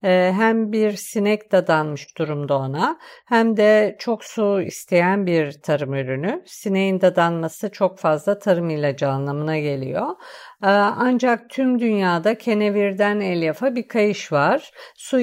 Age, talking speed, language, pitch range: 50-69, 120 wpm, Turkish, 175-225 Hz